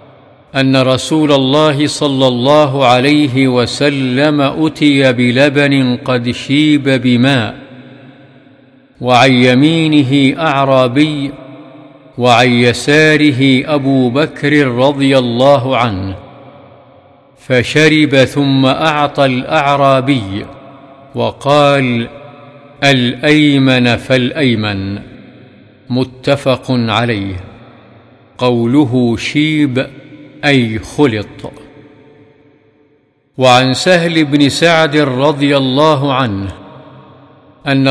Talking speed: 65 wpm